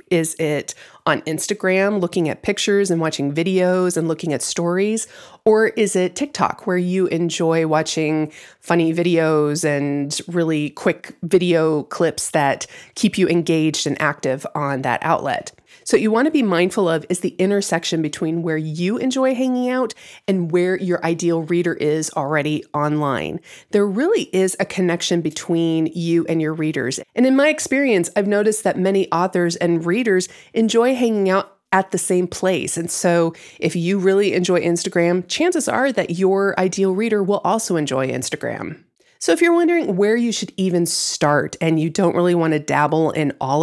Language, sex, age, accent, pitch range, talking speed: English, female, 30-49, American, 160-200 Hz, 170 wpm